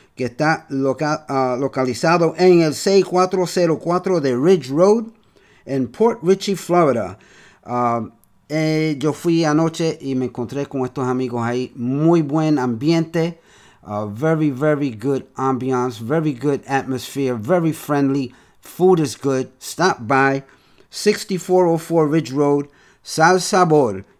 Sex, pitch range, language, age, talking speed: male, 130-165 Hz, Spanish, 50-69, 125 wpm